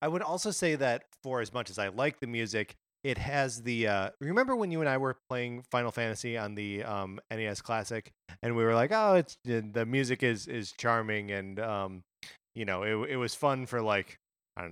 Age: 20-39